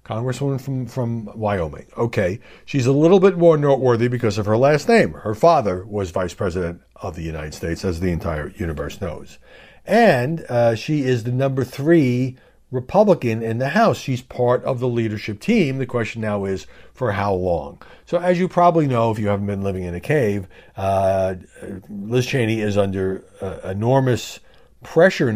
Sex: male